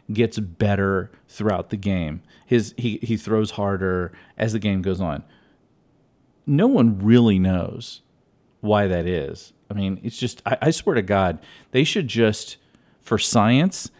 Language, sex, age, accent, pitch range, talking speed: English, male, 40-59, American, 100-130 Hz, 155 wpm